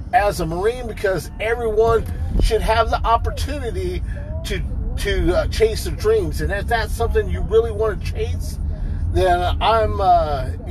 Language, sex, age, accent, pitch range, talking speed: English, male, 40-59, American, 80-105 Hz, 150 wpm